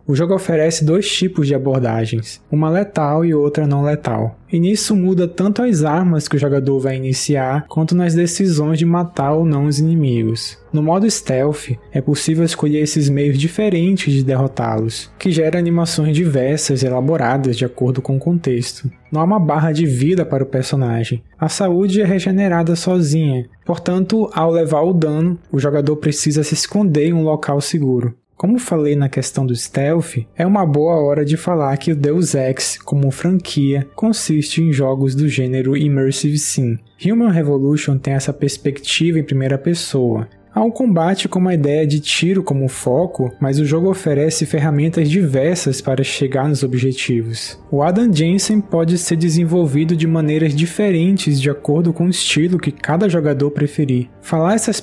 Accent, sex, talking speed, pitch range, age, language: Brazilian, male, 170 wpm, 135-170 Hz, 20-39, Portuguese